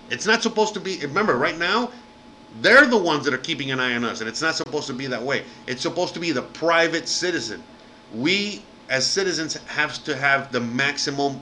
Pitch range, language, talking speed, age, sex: 125-155 Hz, English, 215 wpm, 30-49, male